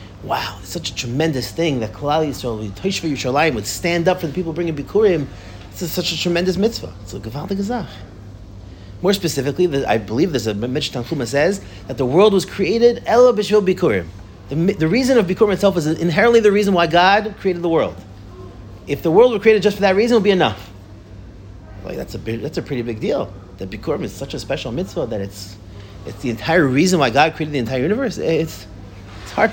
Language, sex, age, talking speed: English, male, 30-49, 200 wpm